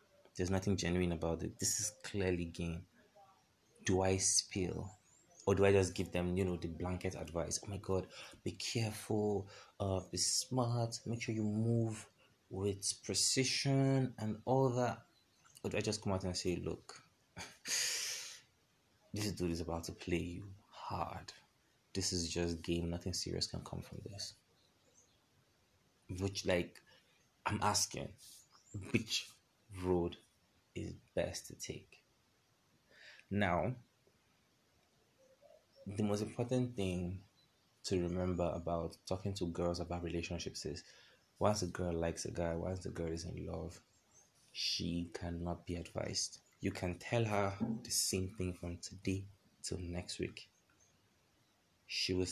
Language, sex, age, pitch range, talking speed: English, male, 20-39, 90-105 Hz, 140 wpm